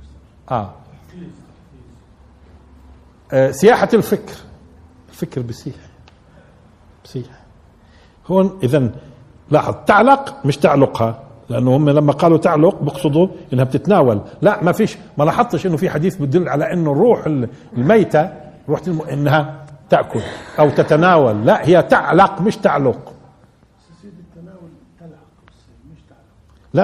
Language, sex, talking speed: Arabic, male, 100 wpm